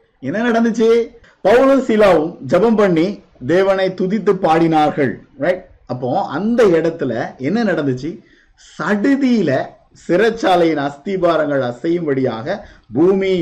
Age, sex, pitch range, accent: 50-69, male, 135-195 Hz, native